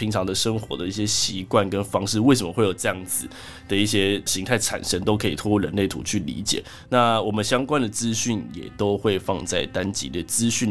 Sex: male